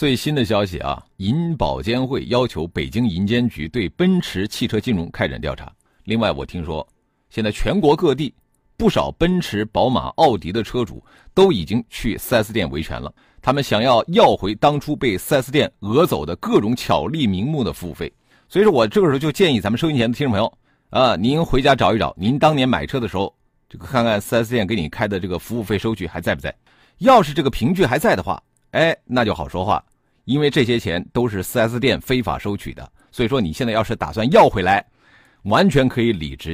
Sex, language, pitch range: male, Chinese, 95-155 Hz